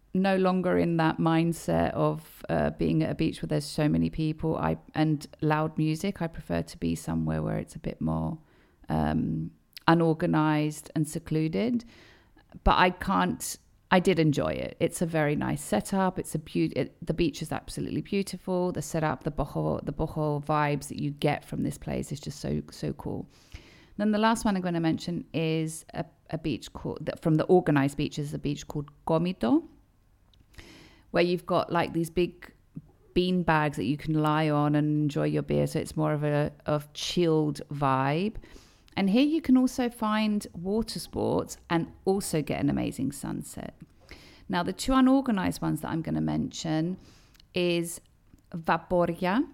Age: 40-59